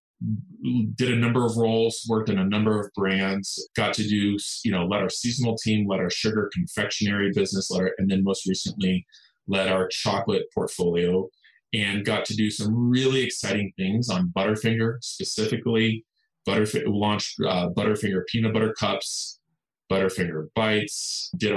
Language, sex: English, male